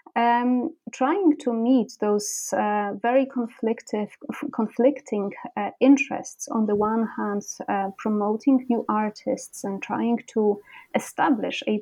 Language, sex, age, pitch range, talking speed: English, female, 30-49, 205-250 Hz, 120 wpm